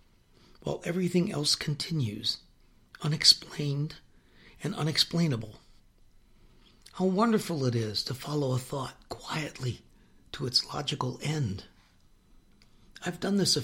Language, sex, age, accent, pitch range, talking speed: English, male, 60-79, American, 115-145 Hz, 105 wpm